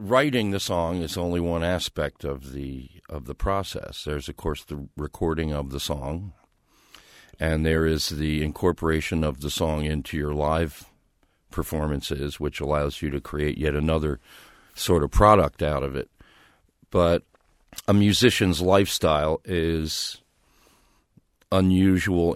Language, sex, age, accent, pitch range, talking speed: English, male, 50-69, American, 75-90 Hz, 135 wpm